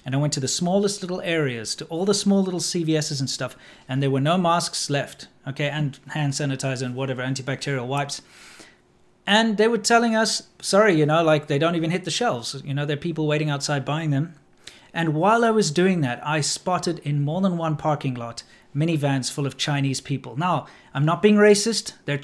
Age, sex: 30-49, male